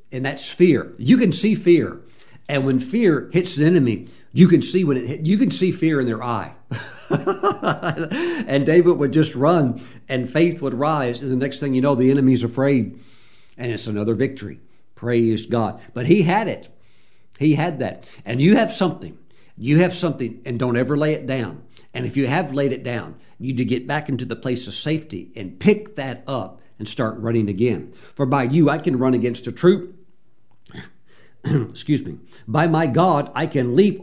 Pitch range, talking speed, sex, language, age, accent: 115-150 Hz, 200 wpm, male, English, 50-69, American